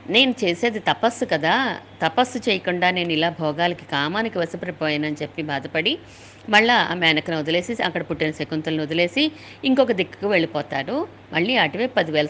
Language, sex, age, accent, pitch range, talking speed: Telugu, female, 50-69, native, 155-215 Hz, 130 wpm